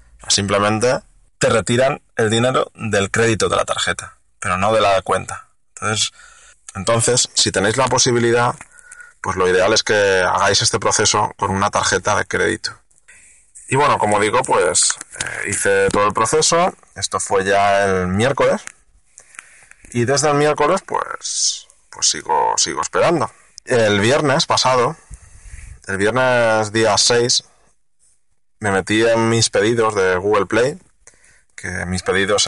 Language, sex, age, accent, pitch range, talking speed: Spanish, male, 20-39, Spanish, 100-140 Hz, 140 wpm